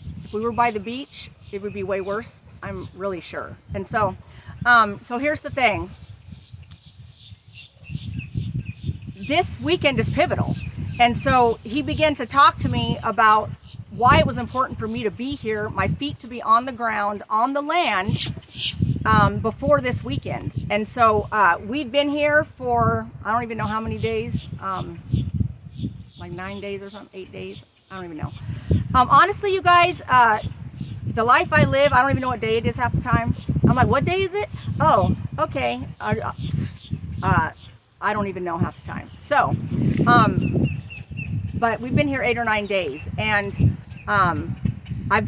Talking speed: 175 wpm